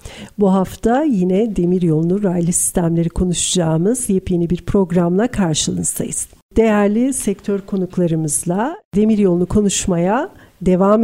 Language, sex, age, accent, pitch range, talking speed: Turkish, female, 50-69, native, 200-265 Hz, 105 wpm